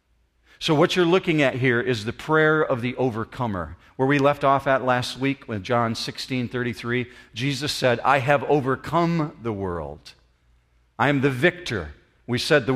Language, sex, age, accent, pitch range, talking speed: English, male, 50-69, American, 110-150 Hz, 170 wpm